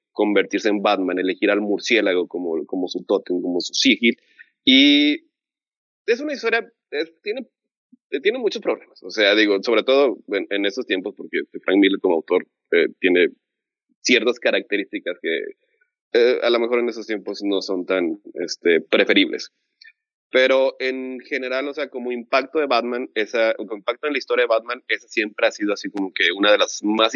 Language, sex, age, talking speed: Spanish, male, 30-49, 180 wpm